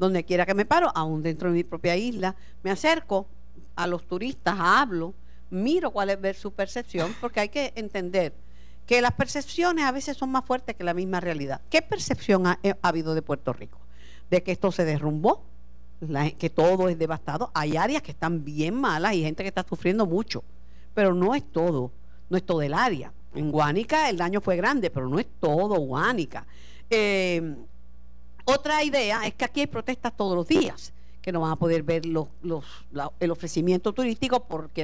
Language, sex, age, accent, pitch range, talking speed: Spanish, female, 50-69, American, 160-245 Hz, 190 wpm